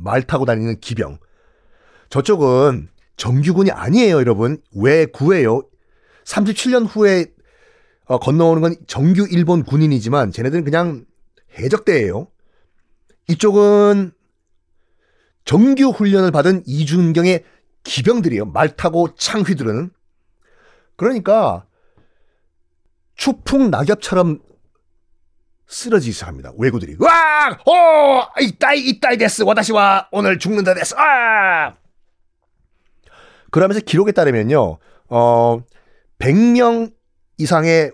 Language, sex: Korean, male